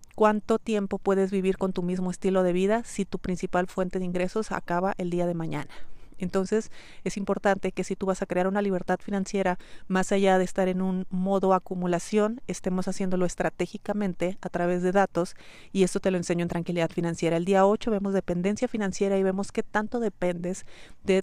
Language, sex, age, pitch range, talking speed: Spanish, female, 30-49, 180-205 Hz, 190 wpm